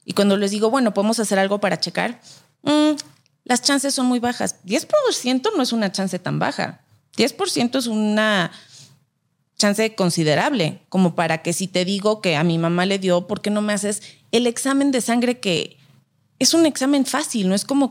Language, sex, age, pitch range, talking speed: Spanish, female, 30-49, 170-225 Hz, 190 wpm